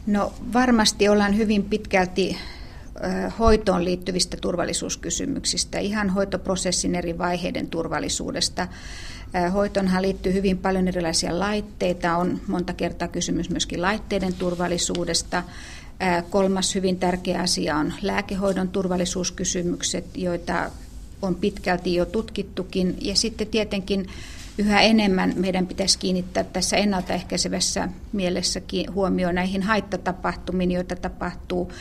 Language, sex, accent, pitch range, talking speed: Finnish, female, native, 180-200 Hz, 100 wpm